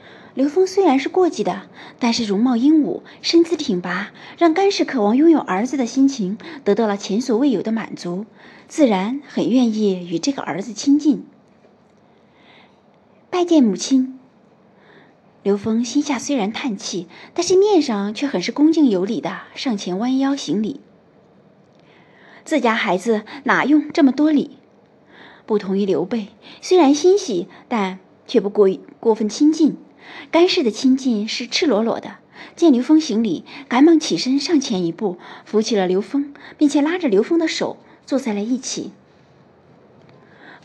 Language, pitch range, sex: Chinese, 210-295 Hz, female